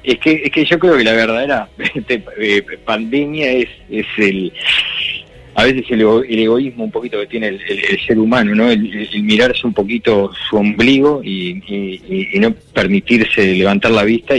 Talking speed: 195 wpm